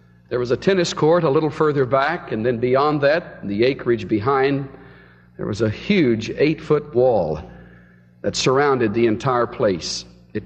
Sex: male